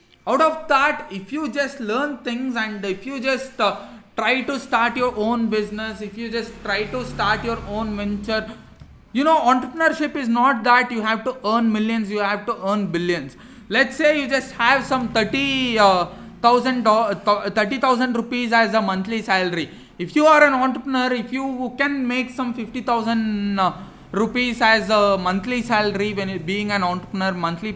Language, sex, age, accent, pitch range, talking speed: English, male, 20-39, Indian, 200-255 Hz, 170 wpm